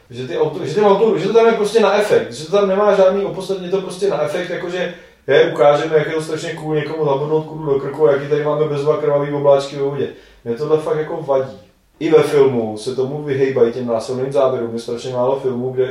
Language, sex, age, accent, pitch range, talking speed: Czech, male, 30-49, native, 125-150 Hz, 240 wpm